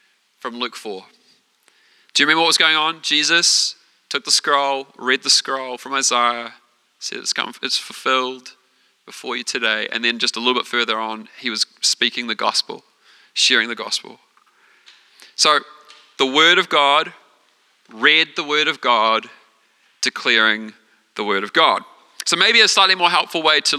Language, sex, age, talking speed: English, male, 30-49, 165 wpm